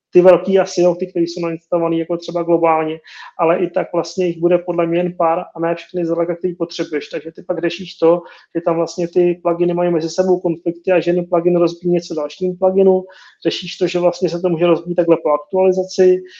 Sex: male